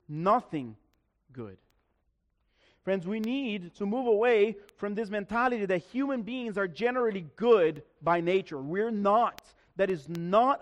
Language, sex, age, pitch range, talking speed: English, male, 40-59, 145-200 Hz, 135 wpm